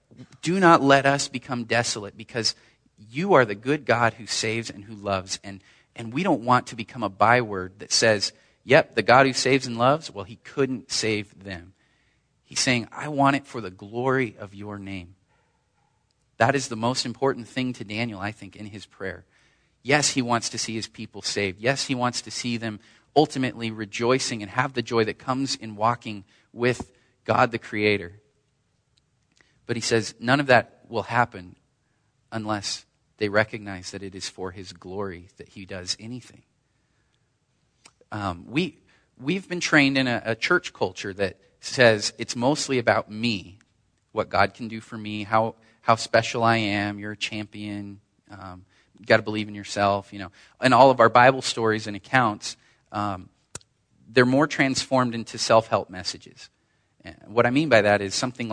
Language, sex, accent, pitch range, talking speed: English, male, American, 105-125 Hz, 180 wpm